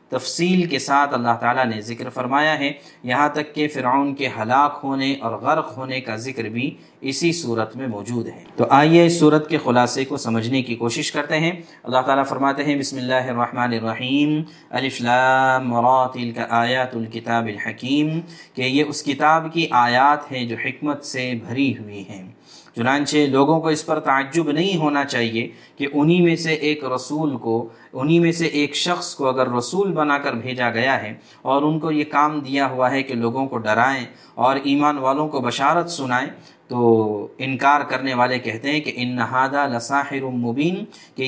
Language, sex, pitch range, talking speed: Urdu, male, 125-150 Hz, 180 wpm